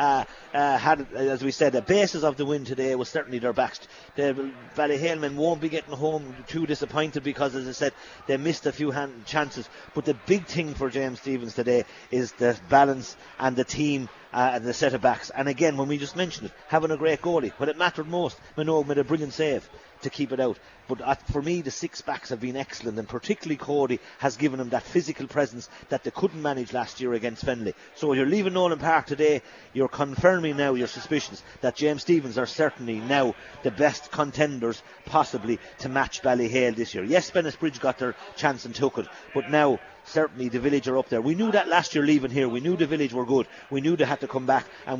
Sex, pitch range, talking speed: male, 130-155 Hz, 225 wpm